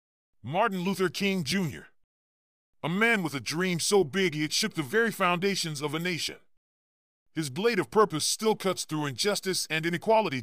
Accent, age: American, 40-59